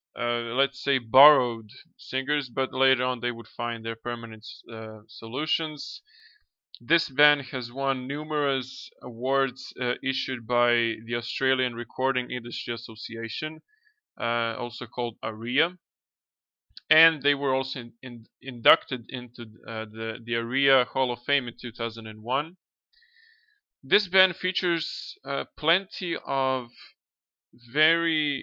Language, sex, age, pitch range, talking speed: English, male, 20-39, 120-150 Hz, 115 wpm